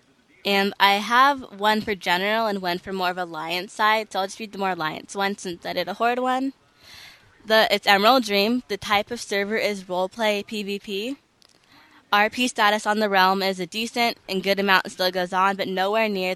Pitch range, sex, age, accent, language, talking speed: 185-225 Hz, female, 20-39, American, English, 210 wpm